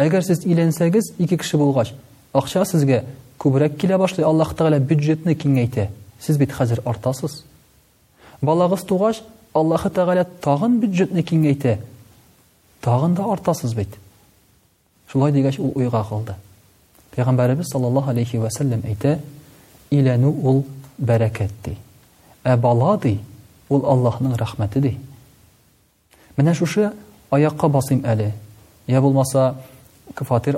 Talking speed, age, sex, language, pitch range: 80 wpm, 40-59, male, Russian, 120-155 Hz